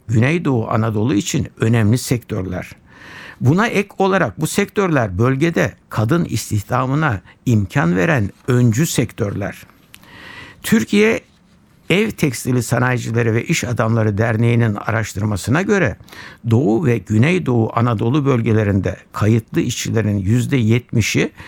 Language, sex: Turkish, male